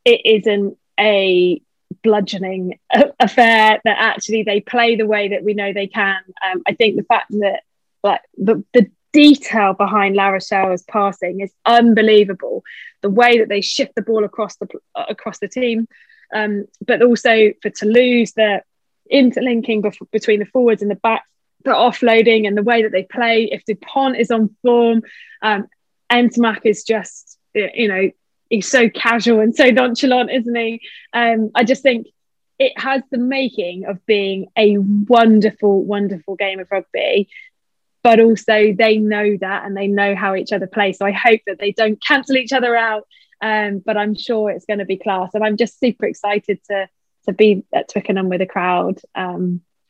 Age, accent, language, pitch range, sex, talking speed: 20-39, British, English, 200-235 Hz, female, 175 wpm